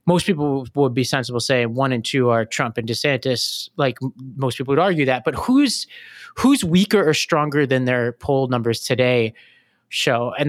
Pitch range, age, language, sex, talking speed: 125-160 Hz, 30-49, English, male, 185 wpm